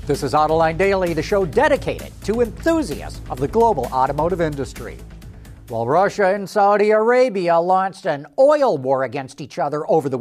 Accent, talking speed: American, 165 wpm